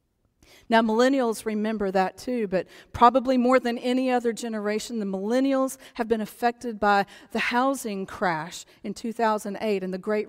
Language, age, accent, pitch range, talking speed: English, 40-59, American, 195-260 Hz, 150 wpm